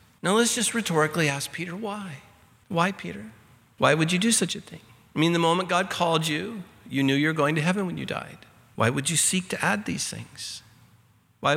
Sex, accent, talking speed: male, American, 220 wpm